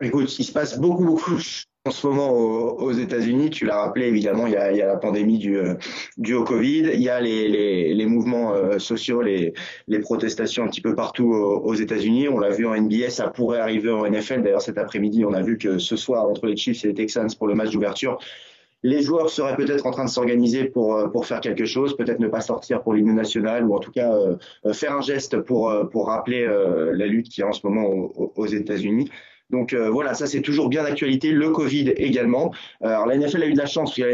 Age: 30-49